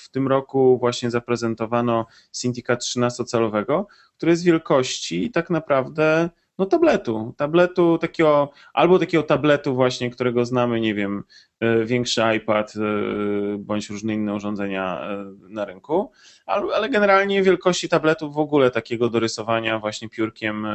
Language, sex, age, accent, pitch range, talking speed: Polish, male, 20-39, native, 105-135 Hz, 120 wpm